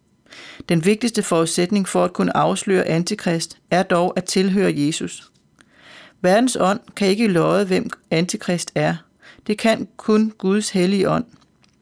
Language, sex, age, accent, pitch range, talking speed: Danish, female, 40-59, native, 175-210 Hz, 135 wpm